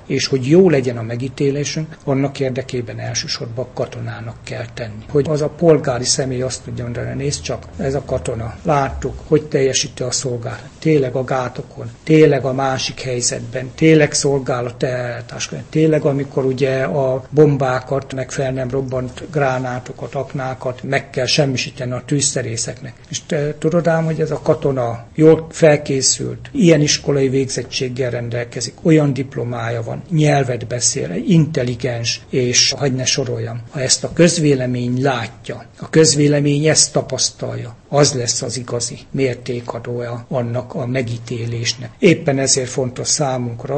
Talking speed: 135 wpm